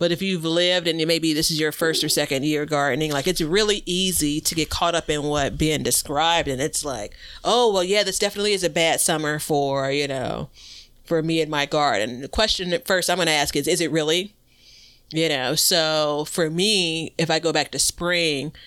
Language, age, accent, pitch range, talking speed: English, 30-49, American, 155-195 Hz, 220 wpm